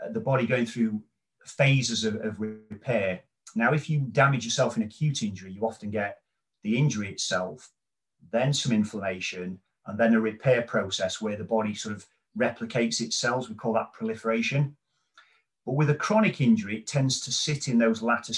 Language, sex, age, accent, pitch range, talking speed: English, male, 40-59, British, 105-140 Hz, 175 wpm